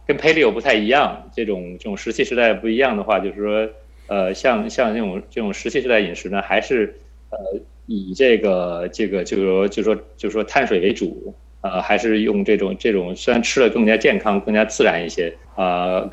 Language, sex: Chinese, male